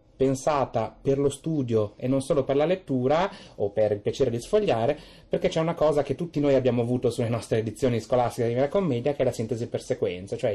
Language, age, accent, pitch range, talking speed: Italian, 30-49, native, 120-150 Hz, 220 wpm